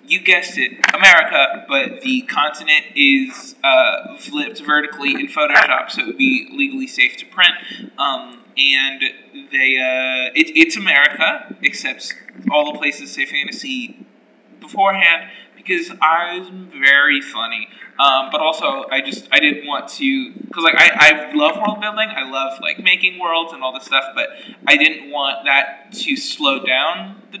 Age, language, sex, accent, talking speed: 20-39, English, male, American, 160 wpm